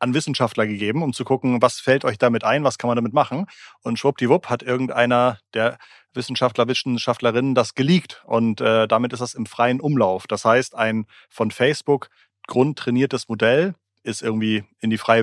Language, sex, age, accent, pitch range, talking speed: German, male, 30-49, German, 115-135 Hz, 175 wpm